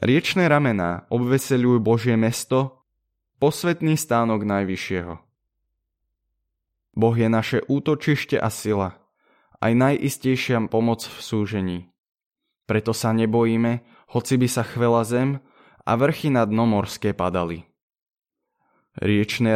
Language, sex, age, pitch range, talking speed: Slovak, male, 20-39, 100-130 Hz, 105 wpm